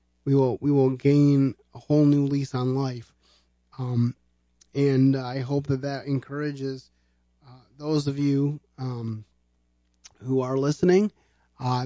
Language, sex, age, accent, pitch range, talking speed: English, male, 30-49, American, 125-155 Hz, 135 wpm